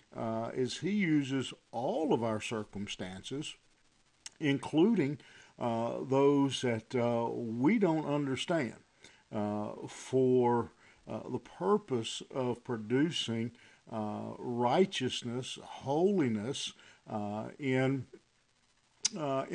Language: English